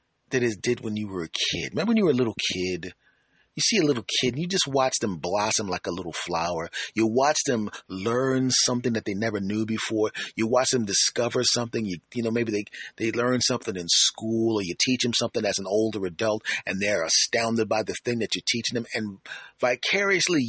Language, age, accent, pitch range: English, 30-49, American, 110-140 Hz